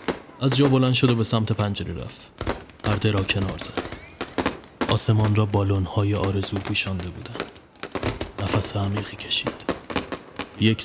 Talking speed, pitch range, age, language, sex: 125 wpm, 95-110 Hz, 30-49, Persian, male